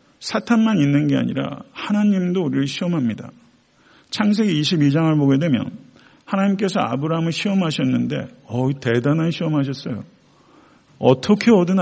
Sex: male